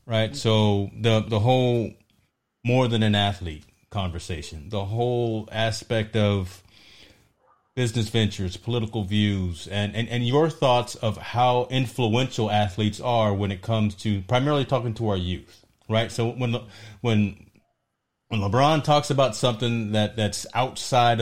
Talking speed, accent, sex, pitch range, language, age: 140 wpm, American, male, 100-120 Hz, English, 30-49